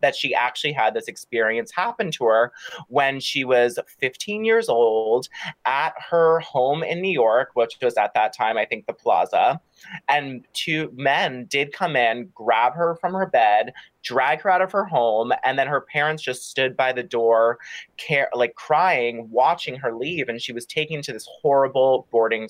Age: 30-49